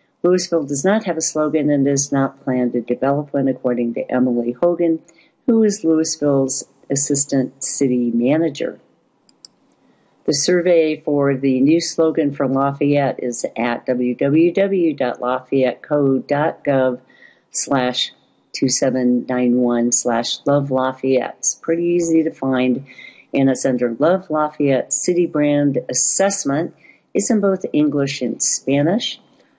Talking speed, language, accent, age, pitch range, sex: 115 wpm, English, American, 50-69, 130-165 Hz, female